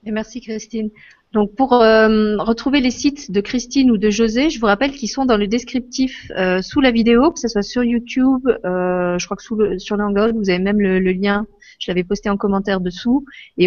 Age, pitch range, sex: 30-49, 185-225 Hz, female